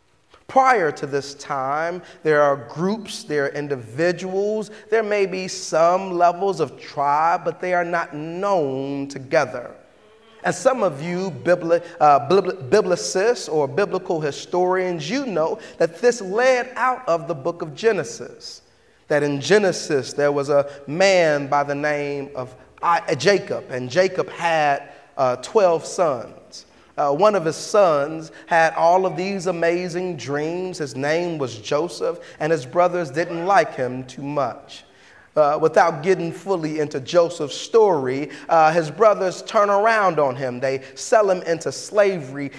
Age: 30-49